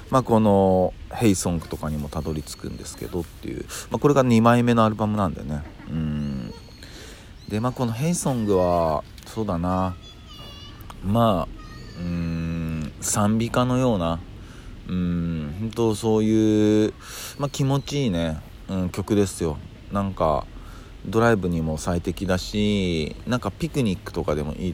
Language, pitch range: Japanese, 80-105 Hz